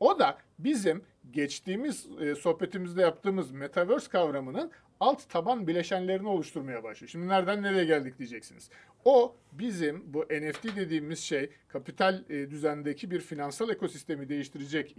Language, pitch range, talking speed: Turkish, 145-200 Hz, 130 wpm